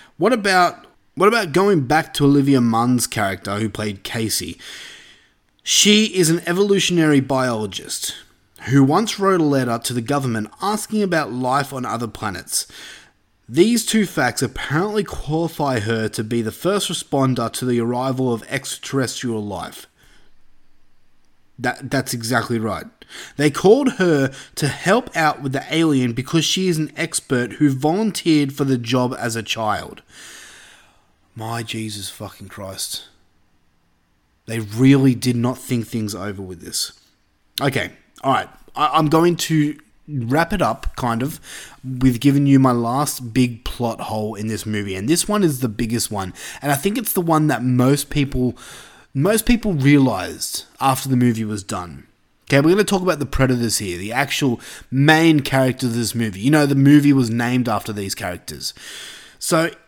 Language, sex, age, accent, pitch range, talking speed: English, male, 20-39, Australian, 110-155 Hz, 160 wpm